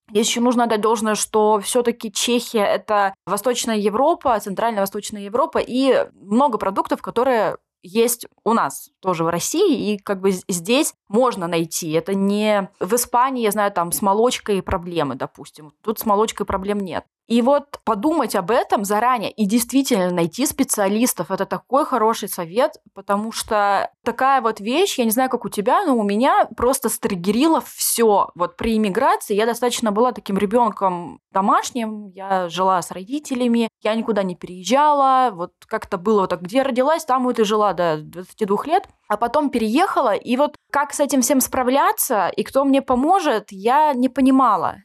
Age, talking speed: 20-39, 170 wpm